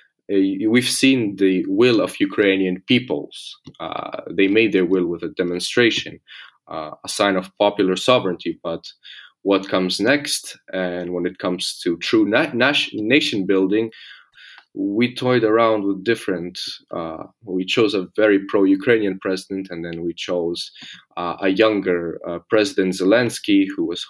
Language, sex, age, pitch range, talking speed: English, male, 20-39, 90-105 Hz, 140 wpm